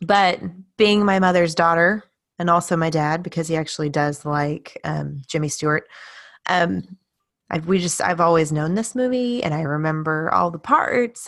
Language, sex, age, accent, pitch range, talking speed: English, female, 20-39, American, 155-200 Hz, 160 wpm